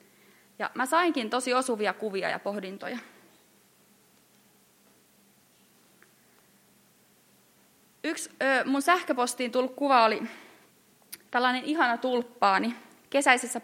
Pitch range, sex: 205-255 Hz, female